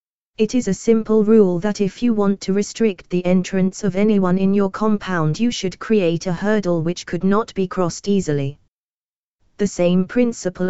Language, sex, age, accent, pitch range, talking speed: English, female, 20-39, British, 175-210 Hz, 180 wpm